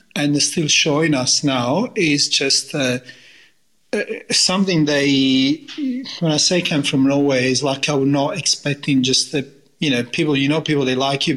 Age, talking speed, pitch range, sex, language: 30-49, 180 wpm, 135-165 Hz, male, English